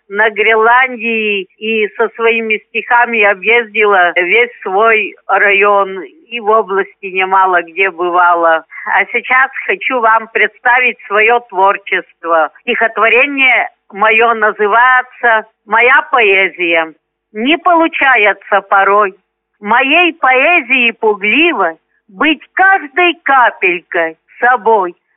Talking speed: 90 wpm